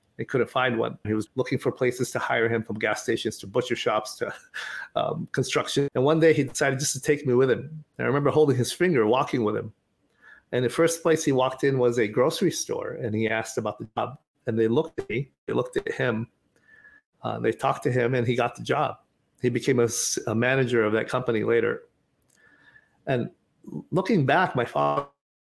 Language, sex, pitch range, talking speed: English, male, 120-155 Hz, 215 wpm